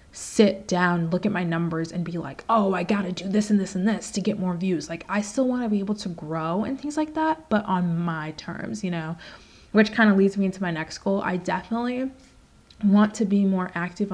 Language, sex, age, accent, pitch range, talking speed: English, female, 20-39, American, 175-225 Hz, 240 wpm